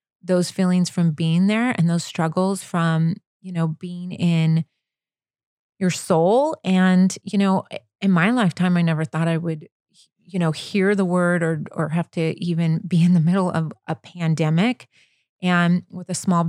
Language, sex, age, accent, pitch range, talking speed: English, female, 30-49, American, 170-190 Hz, 170 wpm